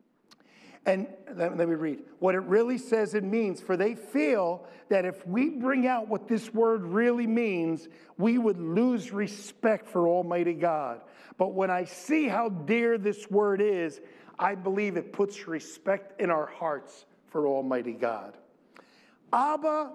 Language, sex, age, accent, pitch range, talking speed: English, male, 50-69, American, 185-240 Hz, 155 wpm